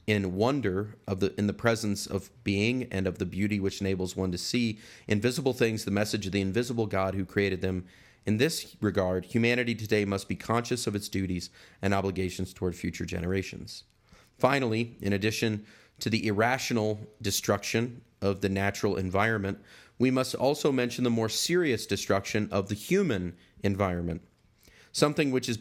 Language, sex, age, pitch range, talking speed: English, male, 30-49, 100-115 Hz, 165 wpm